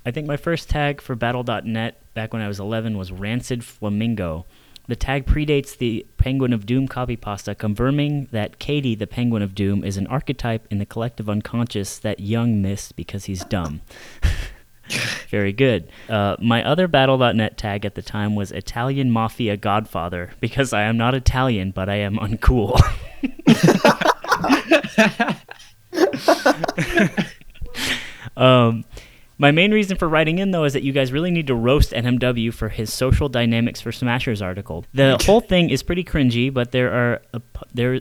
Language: English